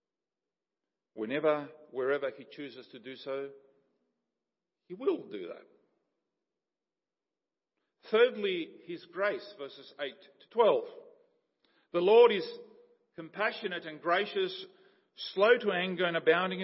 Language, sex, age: English, male, 50-69